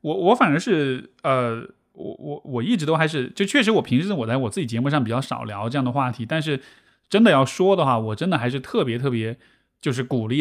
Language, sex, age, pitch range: Chinese, male, 20-39, 130-205 Hz